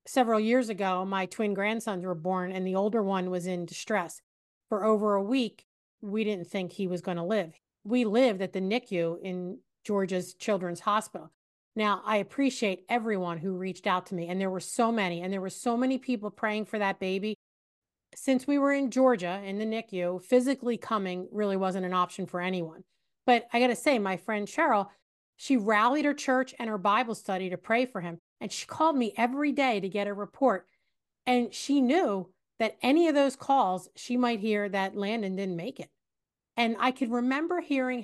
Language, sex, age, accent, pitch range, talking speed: English, female, 40-59, American, 190-250 Hz, 200 wpm